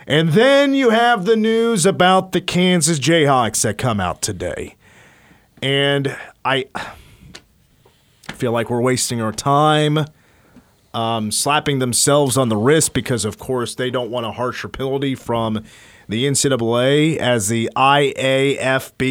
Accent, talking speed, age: American, 135 wpm, 30-49